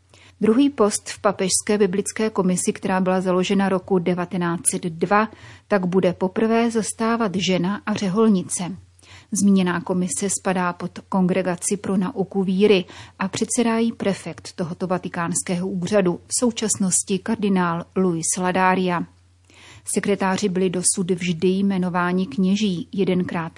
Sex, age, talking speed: female, 30-49, 115 wpm